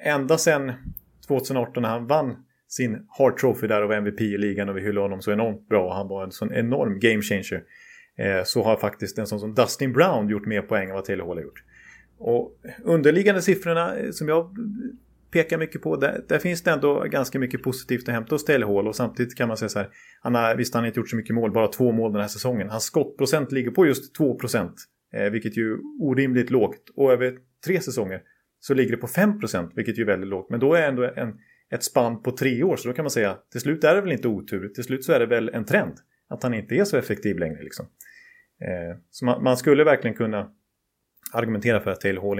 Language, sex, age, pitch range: Swedish, male, 30-49, 110-150 Hz